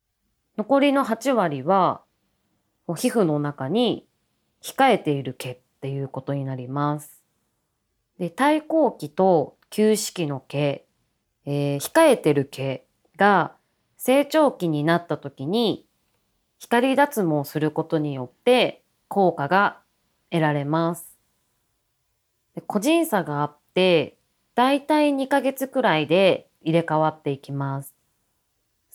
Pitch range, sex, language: 145-220 Hz, female, Japanese